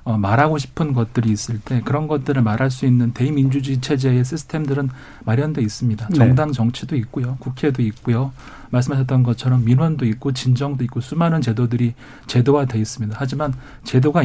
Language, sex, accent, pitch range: Korean, male, native, 120-145 Hz